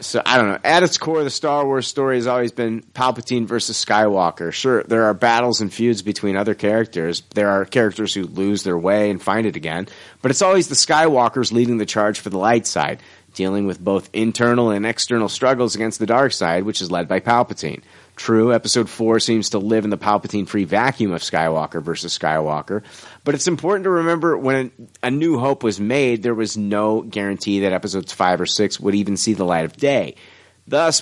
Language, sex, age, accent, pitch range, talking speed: English, male, 30-49, American, 100-125 Hz, 205 wpm